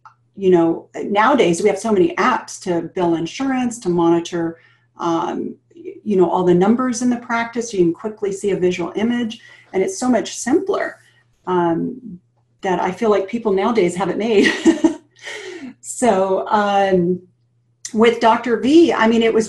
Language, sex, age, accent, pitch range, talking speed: English, female, 40-59, American, 180-235 Hz, 165 wpm